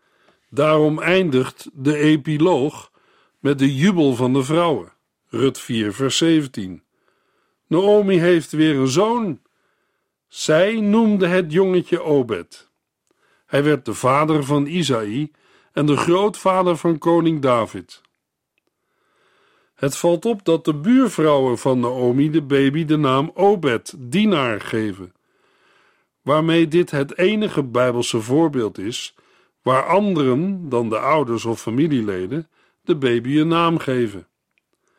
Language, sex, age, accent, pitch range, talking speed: Dutch, male, 50-69, Dutch, 135-185 Hz, 120 wpm